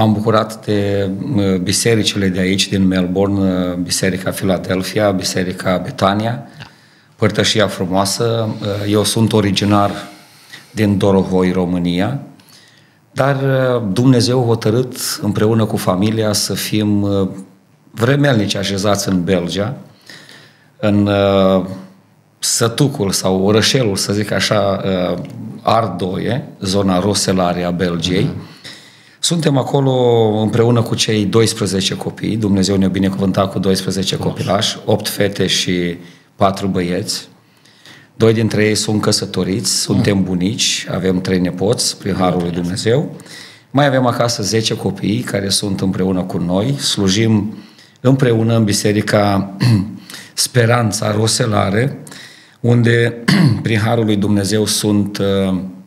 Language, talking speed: Romanian, 105 wpm